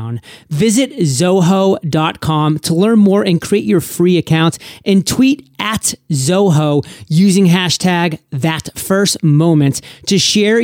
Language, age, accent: English, 30-49, American